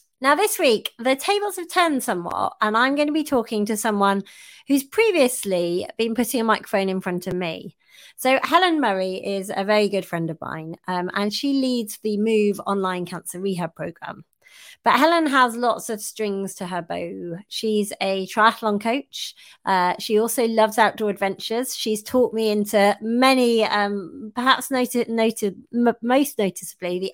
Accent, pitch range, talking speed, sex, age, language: British, 180-235 Hz, 170 wpm, female, 30-49, English